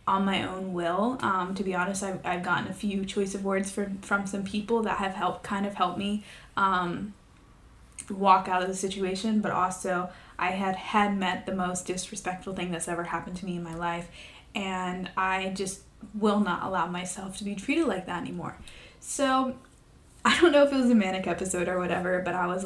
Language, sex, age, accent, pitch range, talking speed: English, female, 10-29, American, 185-210 Hz, 205 wpm